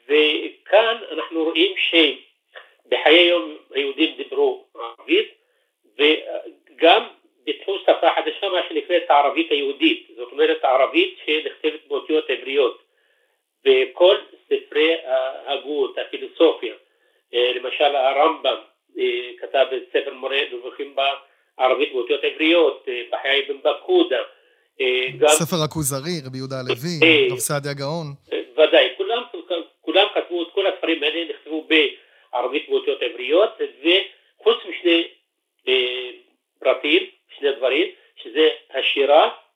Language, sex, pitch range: Hebrew, male, 325-440 Hz